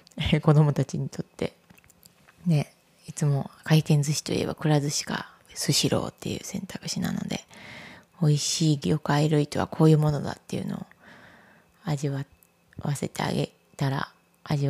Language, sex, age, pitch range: Japanese, female, 20-39, 150-190 Hz